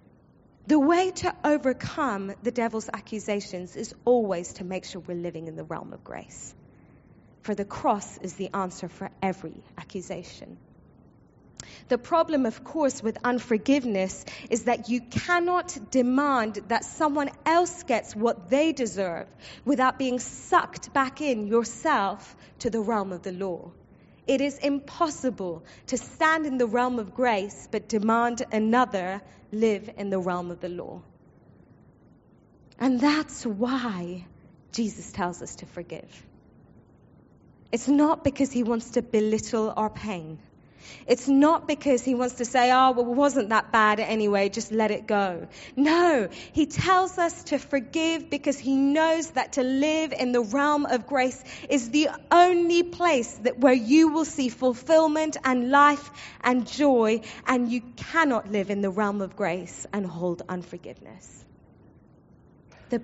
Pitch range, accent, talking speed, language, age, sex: 200-280 Hz, British, 150 wpm, English, 20-39, female